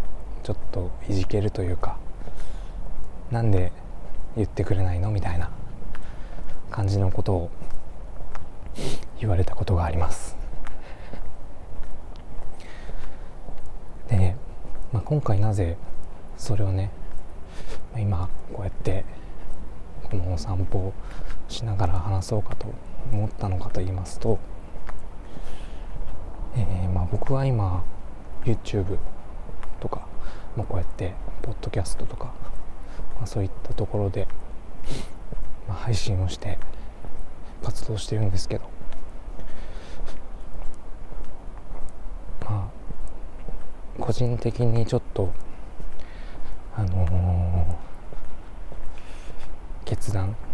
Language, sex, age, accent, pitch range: Japanese, male, 20-39, native, 85-105 Hz